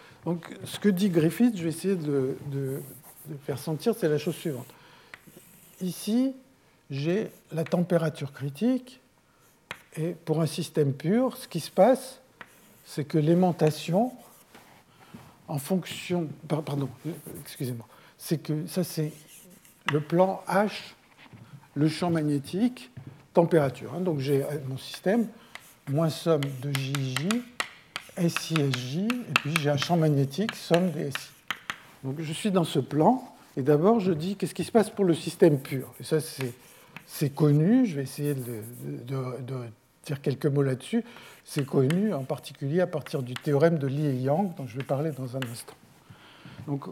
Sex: male